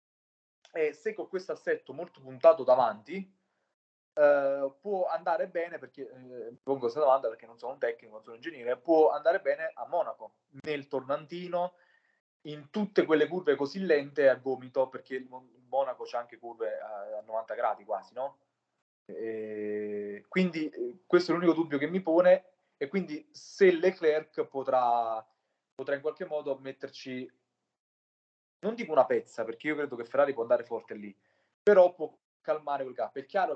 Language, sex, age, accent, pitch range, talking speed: Italian, male, 20-39, native, 130-180 Hz, 160 wpm